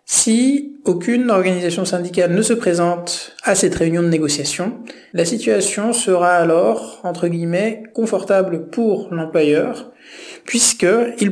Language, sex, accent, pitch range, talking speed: French, male, French, 170-205 Hz, 115 wpm